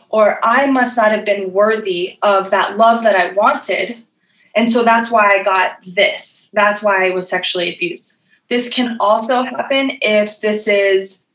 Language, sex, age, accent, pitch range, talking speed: English, female, 20-39, American, 195-230 Hz, 175 wpm